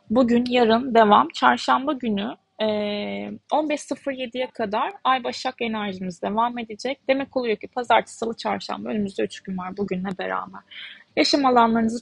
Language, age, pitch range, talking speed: Turkish, 20-39, 210-245 Hz, 135 wpm